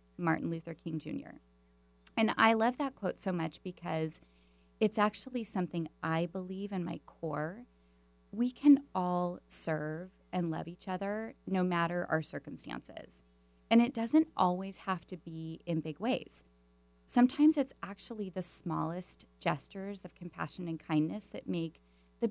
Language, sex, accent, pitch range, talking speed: English, female, American, 155-205 Hz, 150 wpm